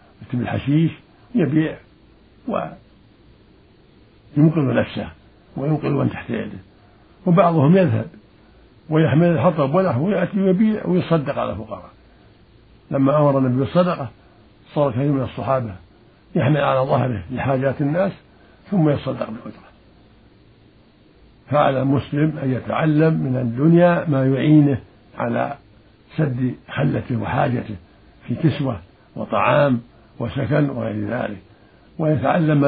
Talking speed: 95 wpm